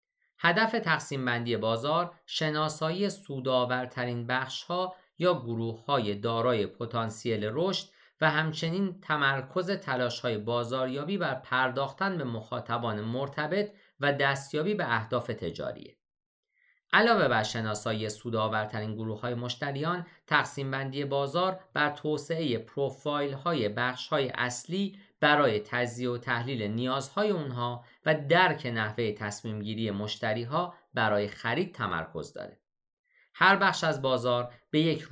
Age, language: 50-69, Persian